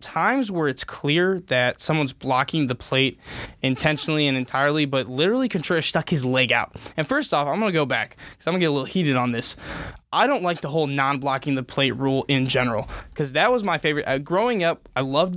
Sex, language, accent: male, English, American